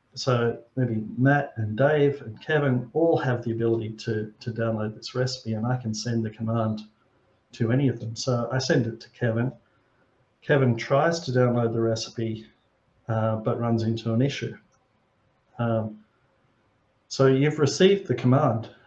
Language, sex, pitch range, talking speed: English, male, 115-130 Hz, 160 wpm